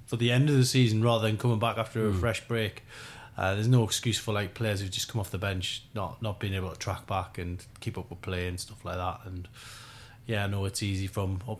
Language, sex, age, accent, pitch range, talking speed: English, male, 20-39, British, 95-115 Hz, 265 wpm